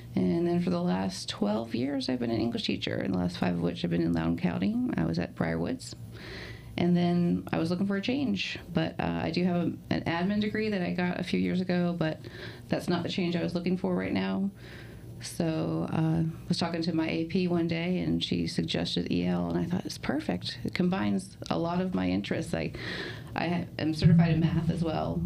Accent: American